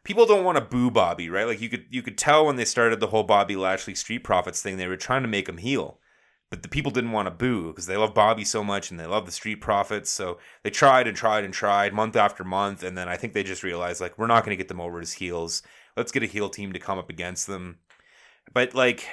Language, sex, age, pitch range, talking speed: English, male, 30-49, 95-135 Hz, 275 wpm